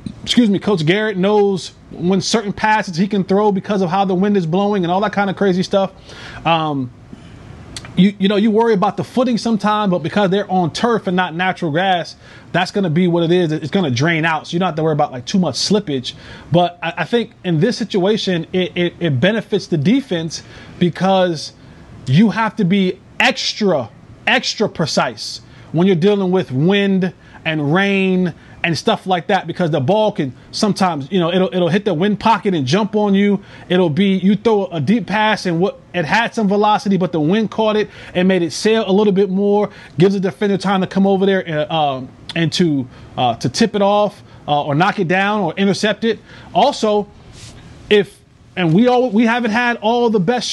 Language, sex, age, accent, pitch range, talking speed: English, male, 20-39, American, 170-210 Hz, 215 wpm